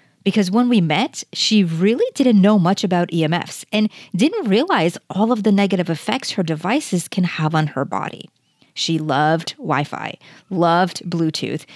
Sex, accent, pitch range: female, American, 165-225 Hz